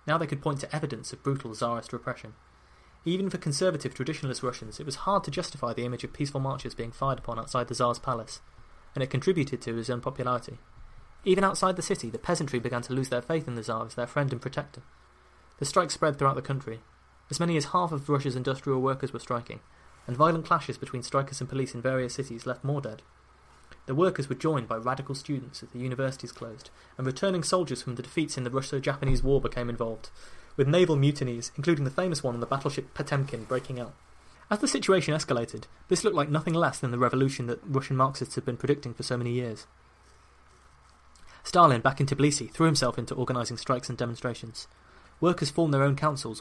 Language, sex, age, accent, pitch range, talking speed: English, male, 20-39, British, 120-145 Hz, 205 wpm